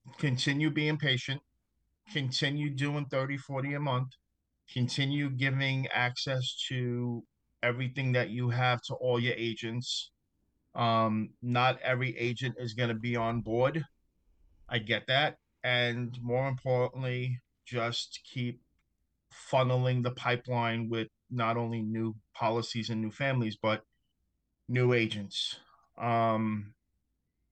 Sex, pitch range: male, 110-130 Hz